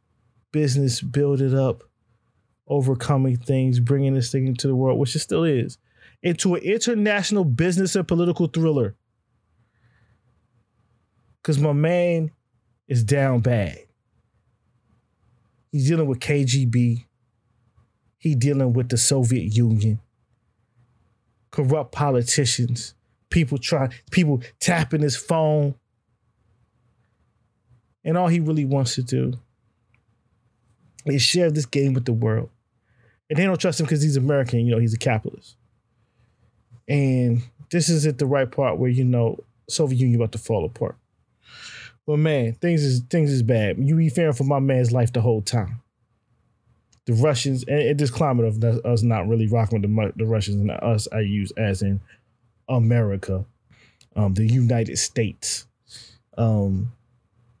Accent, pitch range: American, 115-140 Hz